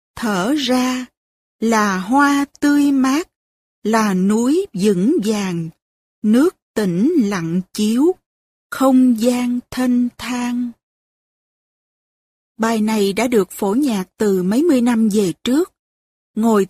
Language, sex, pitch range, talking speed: Vietnamese, female, 200-255 Hz, 110 wpm